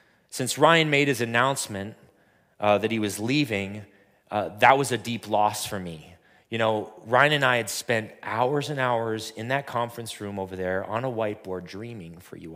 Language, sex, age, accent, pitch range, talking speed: English, male, 30-49, American, 125-170 Hz, 190 wpm